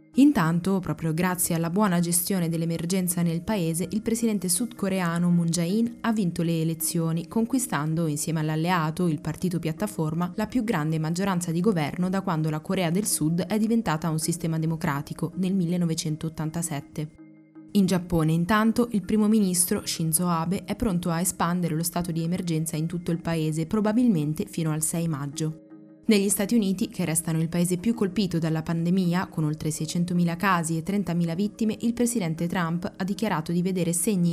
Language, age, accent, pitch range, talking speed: Italian, 20-39, native, 165-205 Hz, 165 wpm